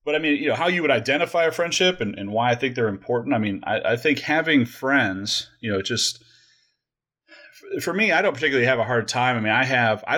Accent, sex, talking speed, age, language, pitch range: American, male, 250 wpm, 30-49, English, 100-130 Hz